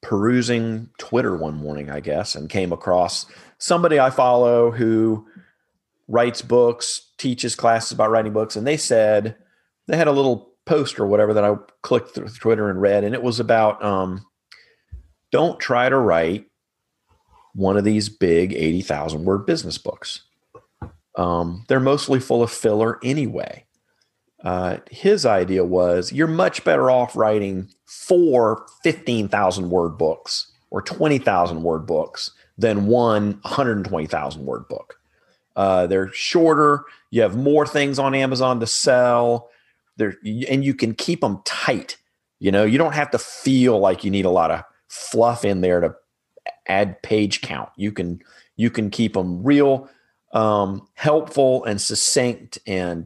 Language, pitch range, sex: English, 95-130 Hz, male